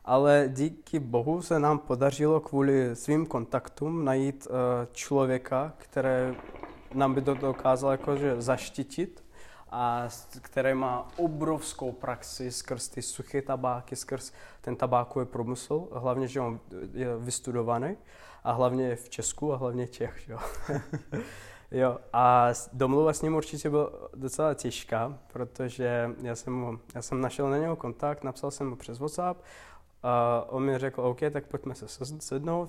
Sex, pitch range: male, 120-135 Hz